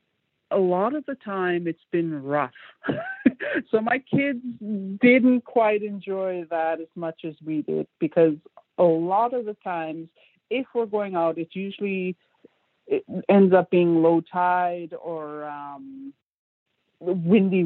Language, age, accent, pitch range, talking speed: English, 50-69, American, 165-205 Hz, 140 wpm